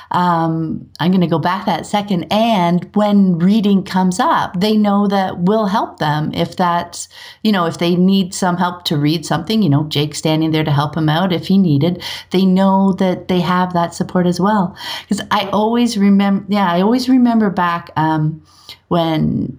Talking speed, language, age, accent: 195 wpm, English, 40-59, American